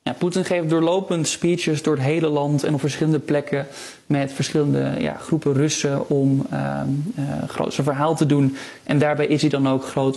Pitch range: 135-155 Hz